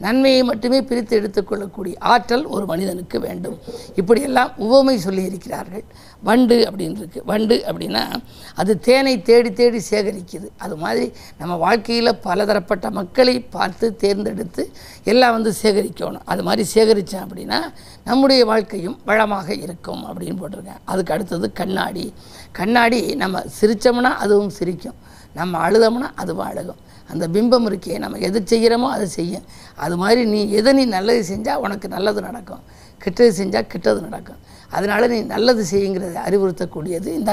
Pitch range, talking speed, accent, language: 195-240 Hz, 135 wpm, native, Tamil